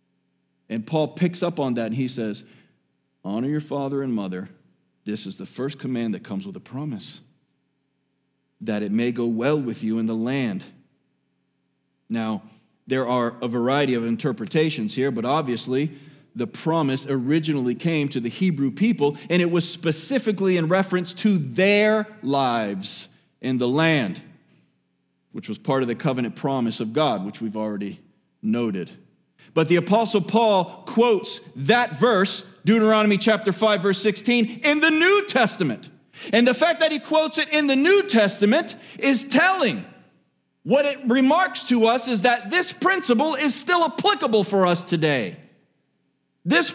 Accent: American